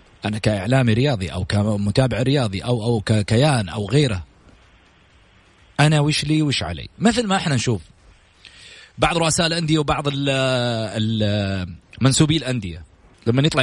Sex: male